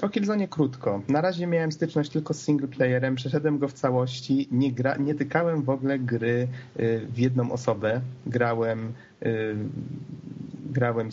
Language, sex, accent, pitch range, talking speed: Polish, male, native, 120-140 Hz, 140 wpm